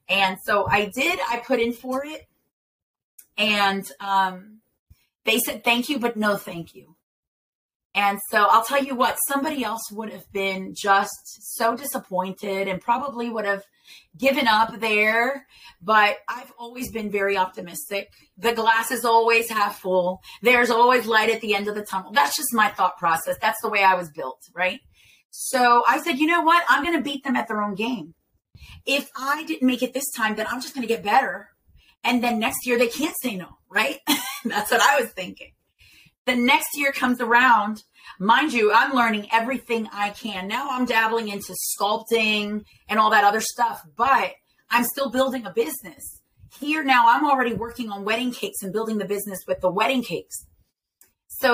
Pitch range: 200-255 Hz